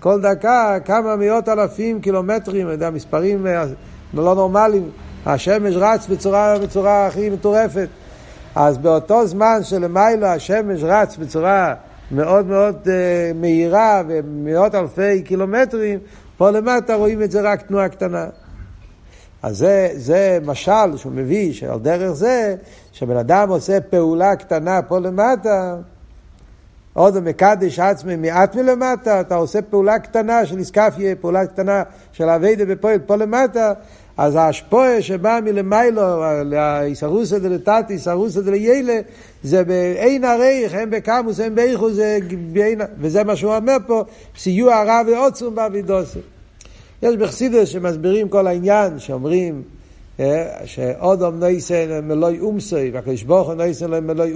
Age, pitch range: 60-79, 170-215 Hz